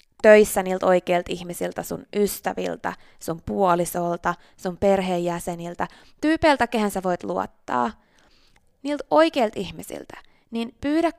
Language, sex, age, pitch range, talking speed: Finnish, female, 20-39, 185-265 Hz, 105 wpm